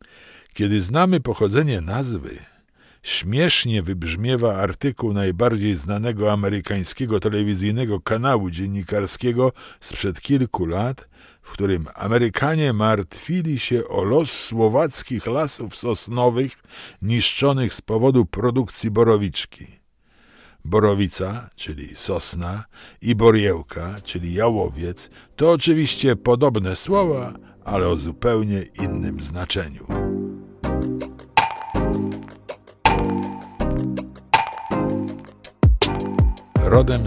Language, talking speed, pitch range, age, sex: Polish, 80 wpm, 95-120 Hz, 50-69, male